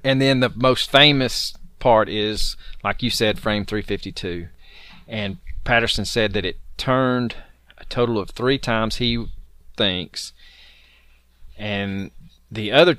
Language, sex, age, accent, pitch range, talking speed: English, male, 30-49, American, 90-125 Hz, 130 wpm